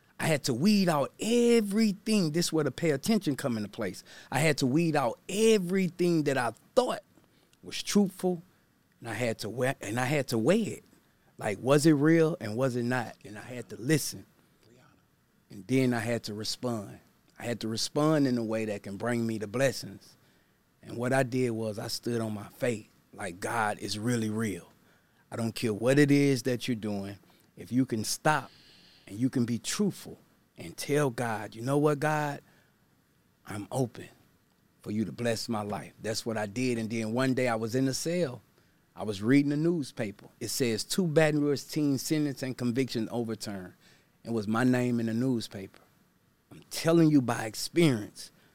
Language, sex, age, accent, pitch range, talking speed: English, male, 30-49, American, 110-150 Hz, 195 wpm